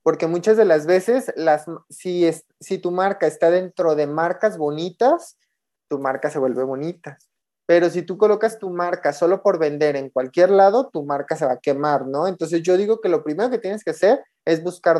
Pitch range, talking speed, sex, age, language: 150-190 Hz, 210 wpm, male, 30-49, Spanish